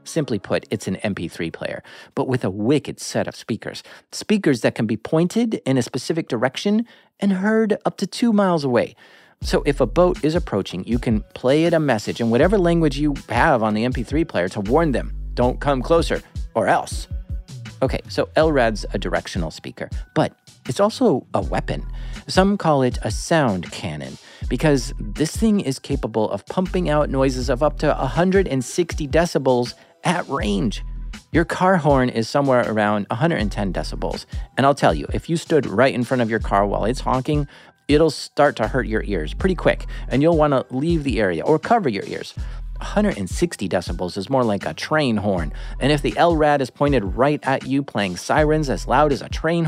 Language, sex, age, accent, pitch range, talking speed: English, male, 40-59, American, 120-170 Hz, 190 wpm